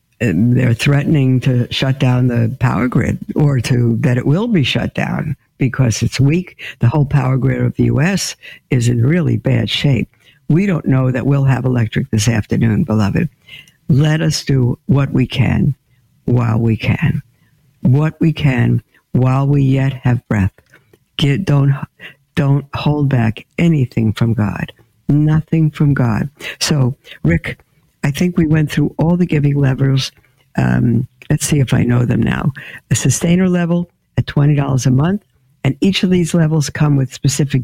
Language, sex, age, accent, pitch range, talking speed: English, female, 60-79, American, 125-160 Hz, 165 wpm